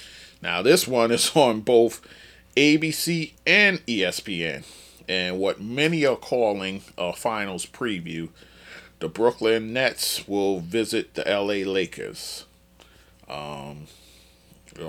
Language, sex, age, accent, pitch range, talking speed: English, male, 30-49, American, 90-105 Hz, 110 wpm